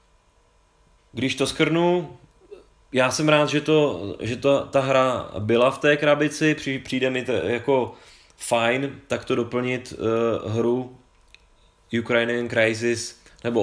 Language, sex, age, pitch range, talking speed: Czech, male, 20-39, 115-130 Hz, 125 wpm